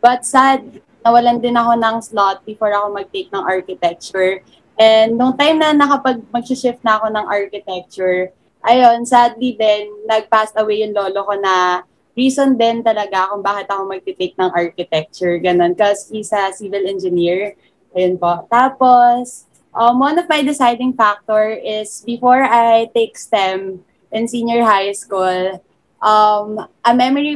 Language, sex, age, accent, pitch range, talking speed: Filipino, female, 20-39, native, 195-245 Hz, 145 wpm